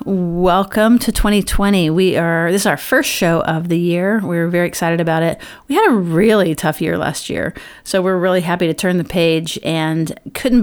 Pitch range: 165-195 Hz